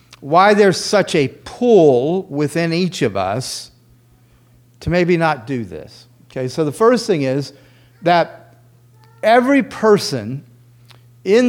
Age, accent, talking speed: 40-59, American, 125 wpm